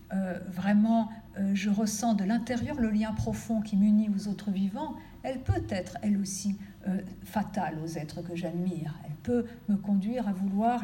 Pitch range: 190-225 Hz